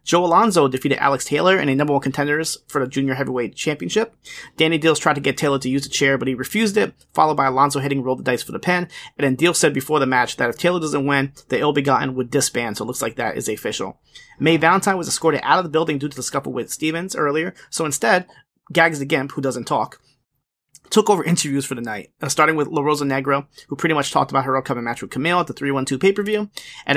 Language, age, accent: English, 30-49, American